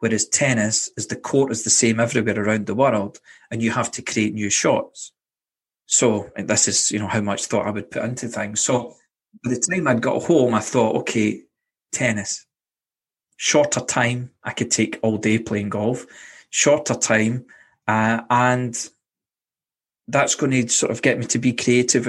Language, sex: English, male